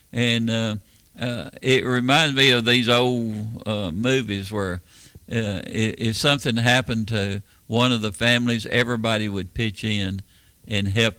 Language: English